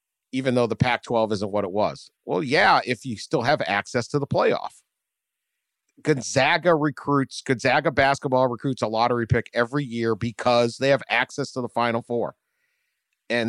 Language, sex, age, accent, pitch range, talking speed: English, male, 50-69, American, 125-185 Hz, 165 wpm